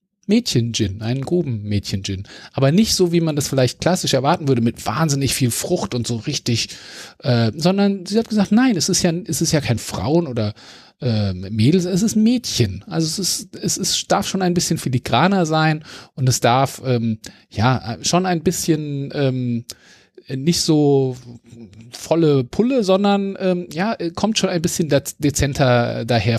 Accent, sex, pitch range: German, male, 120-170 Hz